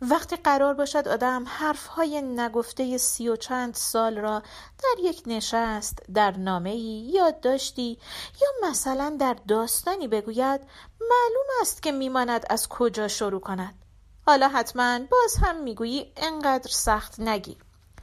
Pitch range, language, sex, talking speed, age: 225-315 Hz, Persian, female, 130 wpm, 40-59